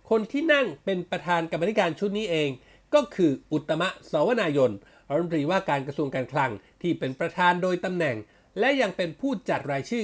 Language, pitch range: Thai, 145-210 Hz